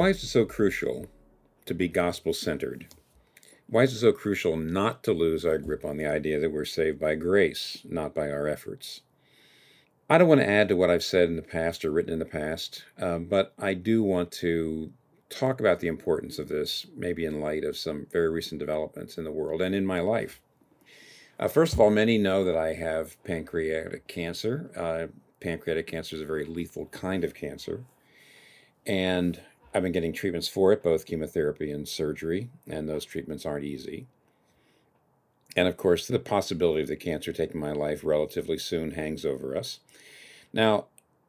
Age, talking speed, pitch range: 50-69, 185 wpm, 80-105 Hz